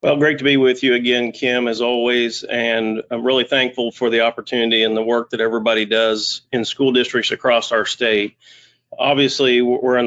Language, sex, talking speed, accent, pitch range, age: English, male, 190 wpm, American, 110-125 Hz, 40-59